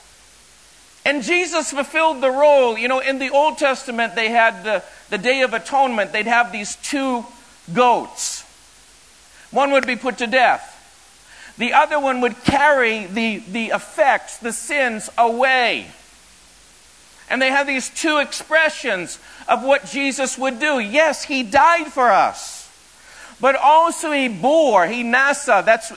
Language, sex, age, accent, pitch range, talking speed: English, male, 50-69, American, 230-280 Hz, 145 wpm